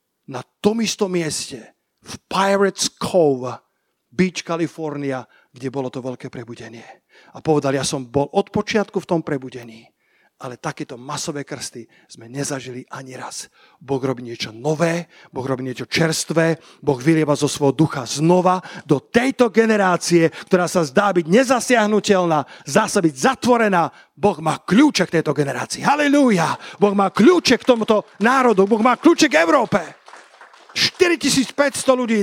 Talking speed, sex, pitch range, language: 140 wpm, male, 140-205 Hz, Slovak